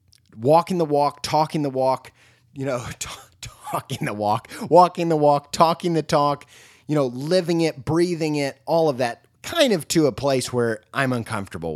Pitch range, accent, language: 110-145 Hz, American, English